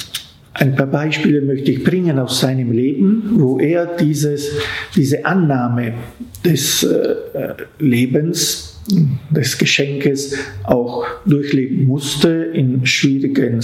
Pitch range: 130-160 Hz